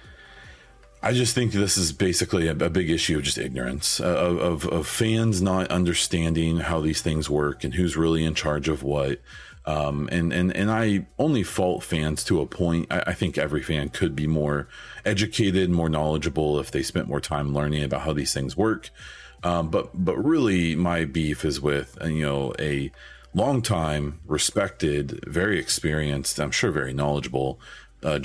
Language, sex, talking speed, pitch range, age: English, male, 175 wpm, 75-90 Hz, 40-59